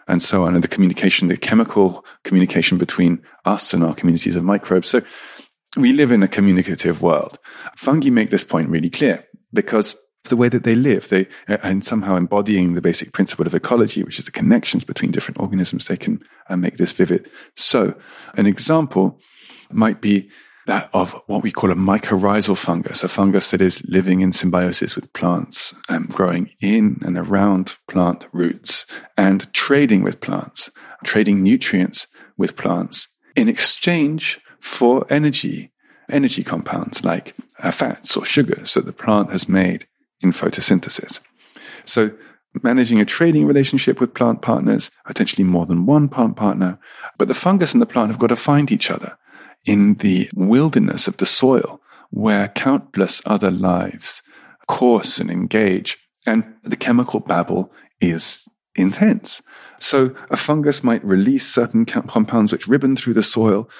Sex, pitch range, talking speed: male, 95-135 Hz, 155 wpm